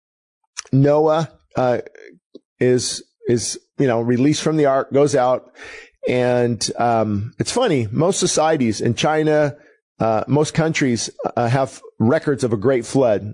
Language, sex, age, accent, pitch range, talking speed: English, male, 40-59, American, 120-150 Hz, 135 wpm